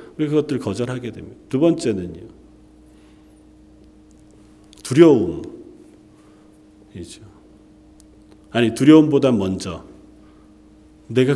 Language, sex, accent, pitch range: Korean, male, native, 100-145 Hz